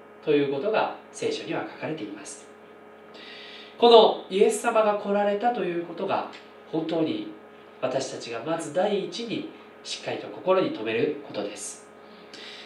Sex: male